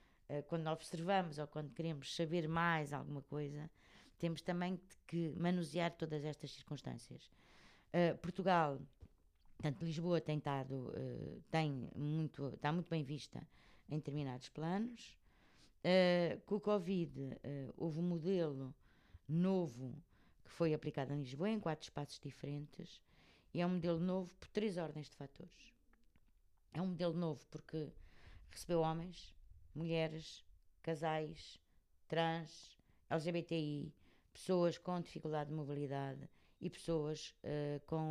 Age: 20-39